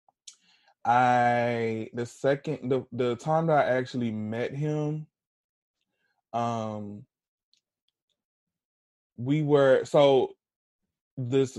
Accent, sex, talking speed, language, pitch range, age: American, male, 85 wpm, English, 110-140 Hz, 20-39